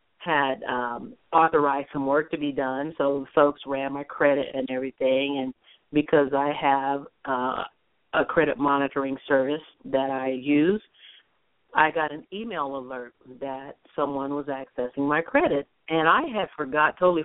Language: English